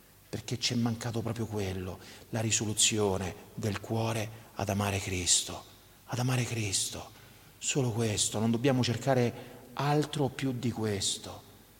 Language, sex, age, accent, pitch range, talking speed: Italian, male, 40-59, native, 95-115 Hz, 125 wpm